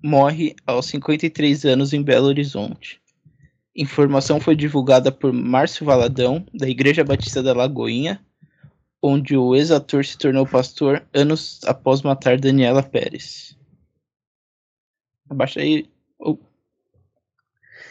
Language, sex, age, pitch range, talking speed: Portuguese, male, 20-39, 130-150 Hz, 100 wpm